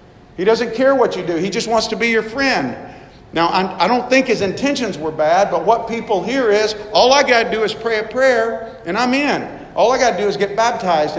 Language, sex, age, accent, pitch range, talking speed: English, male, 50-69, American, 135-195 Hz, 250 wpm